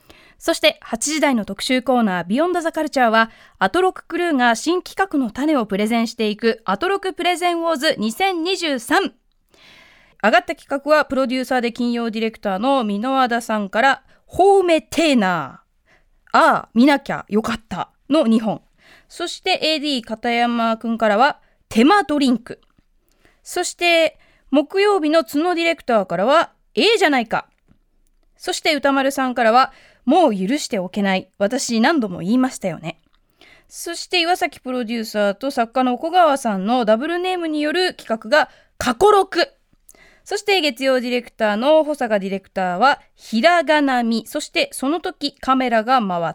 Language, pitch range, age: Japanese, 225-325 Hz, 20-39